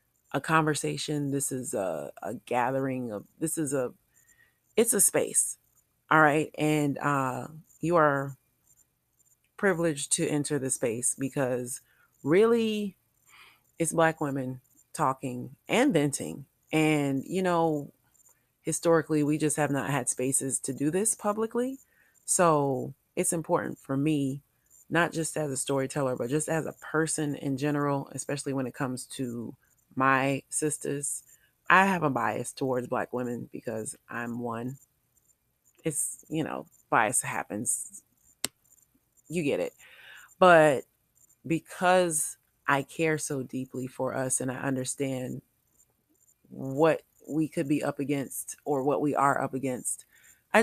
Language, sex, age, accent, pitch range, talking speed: English, female, 30-49, American, 130-155 Hz, 135 wpm